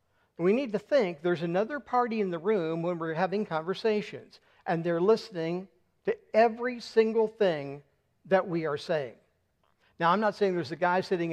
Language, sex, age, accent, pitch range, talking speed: English, male, 60-79, American, 160-210 Hz, 175 wpm